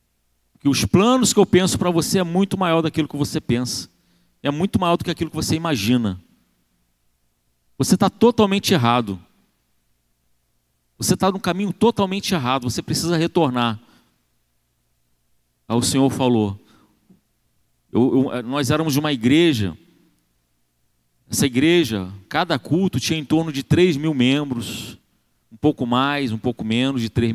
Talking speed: 145 wpm